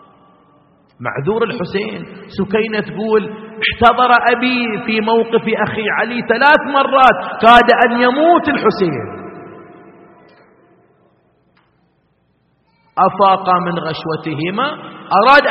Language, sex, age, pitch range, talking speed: Arabic, male, 40-59, 190-250 Hz, 75 wpm